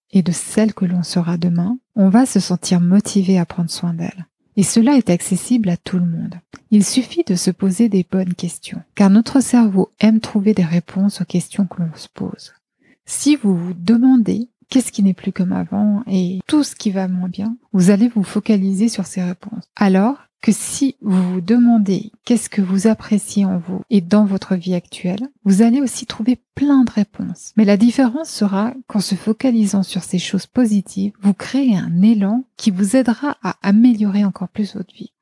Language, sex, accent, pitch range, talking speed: French, female, French, 185-225 Hz, 200 wpm